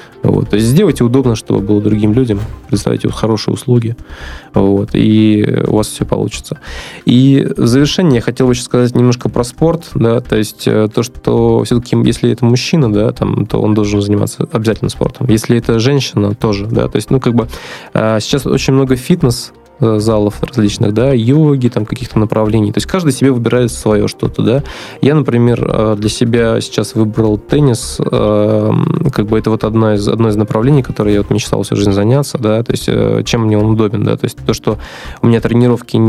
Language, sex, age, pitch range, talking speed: Russian, male, 20-39, 105-125 Hz, 185 wpm